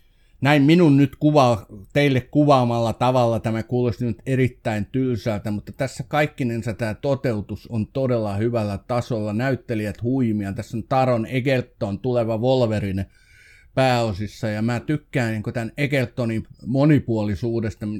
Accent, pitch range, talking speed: native, 105-130 Hz, 125 wpm